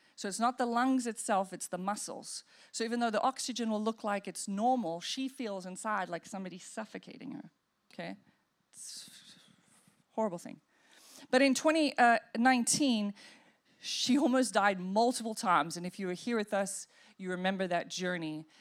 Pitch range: 190-245 Hz